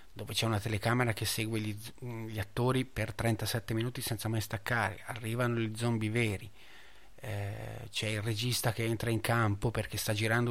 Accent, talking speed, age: native, 170 wpm, 30-49